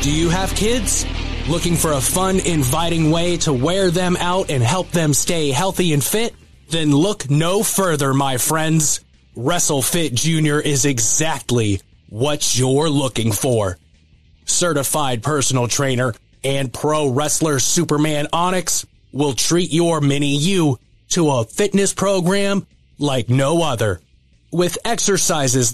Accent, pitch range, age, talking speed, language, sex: American, 130-180 Hz, 20-39, 130 wpm, English, male